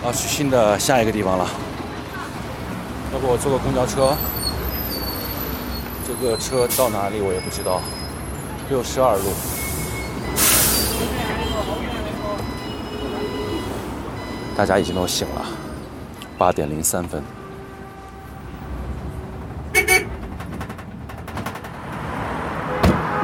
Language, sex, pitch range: Chinese, male, 80-115 Hz